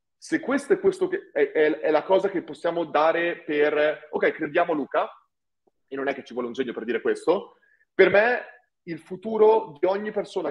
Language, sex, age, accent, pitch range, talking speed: Italian, male, 30-49, native, 150-240 Hz, 195 wpm